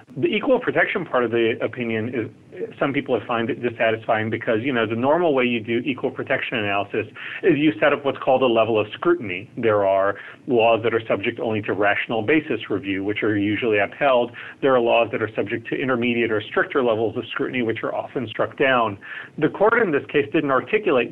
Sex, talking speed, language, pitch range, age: male, 215 wpm, English, 115-145 Hz, 40-59